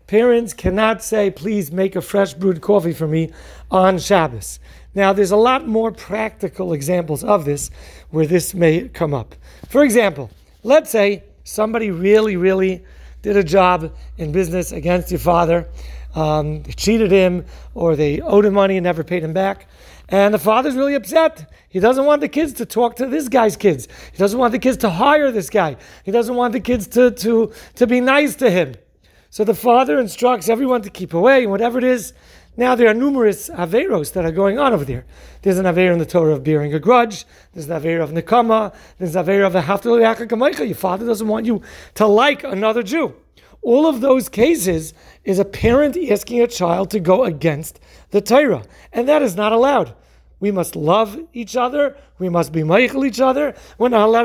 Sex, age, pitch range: male, 40-59, 175-240 Hz